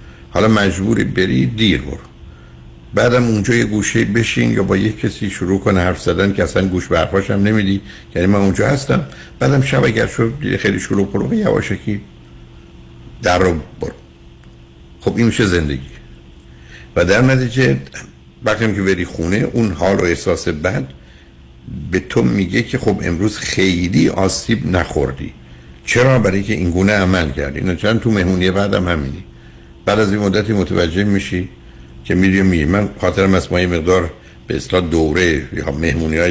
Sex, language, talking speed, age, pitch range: male, Persian, 150 wpm, 60-79, 75-110 Hz